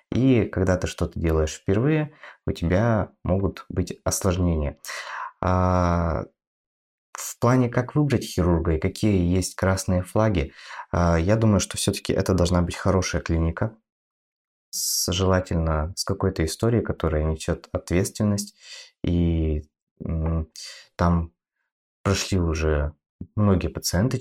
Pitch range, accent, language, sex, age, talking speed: 80-100 Hz, native, Russian, male, 20-39, 115 wpm